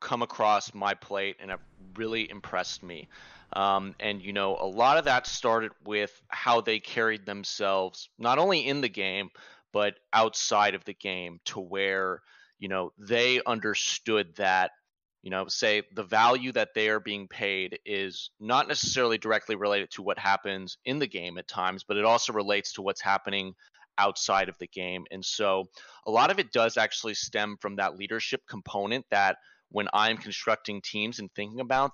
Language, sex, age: English, male, 30-49